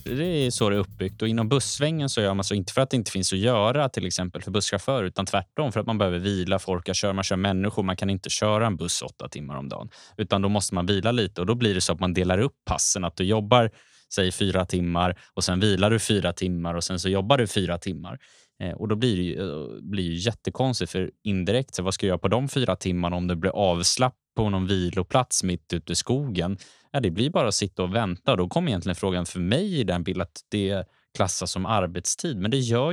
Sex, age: male, 20-39